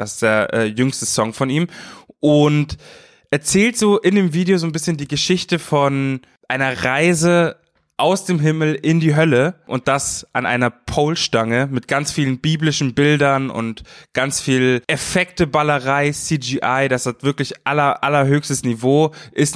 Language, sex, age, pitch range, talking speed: German, male, 20-39, 115-140 Hz, 155 wpm